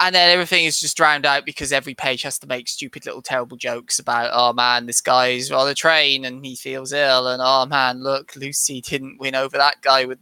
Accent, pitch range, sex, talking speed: British, 125-145 Hz, male, 235 wpm